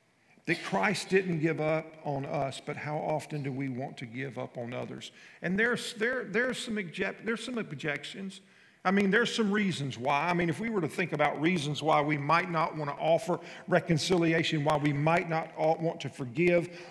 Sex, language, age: male, English, 50-69